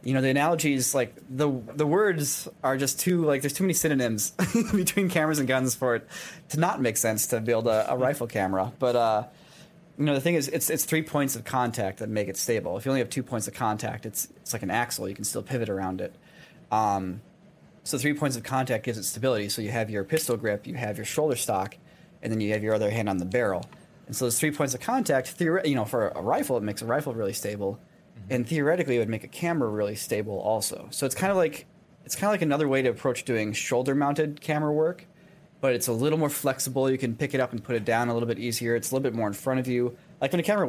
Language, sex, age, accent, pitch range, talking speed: English, male, 30-49, American, 115-150 Hz, 260 wpm